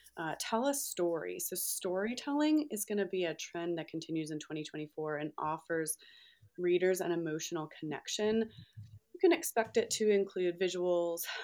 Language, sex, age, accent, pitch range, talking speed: English, female, 30-49, American, 165-220 Hz, 150 wpm